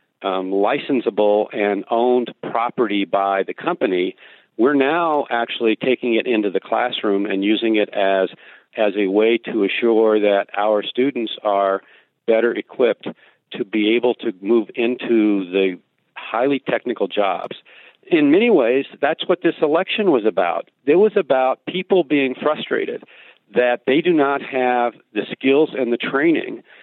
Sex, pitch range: male, 110-145 Hz